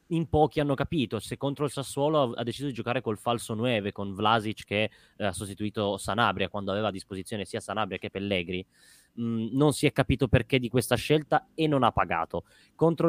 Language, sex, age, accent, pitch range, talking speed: Italian, male, 20-39, native, 105-140 Hz, 200 wpm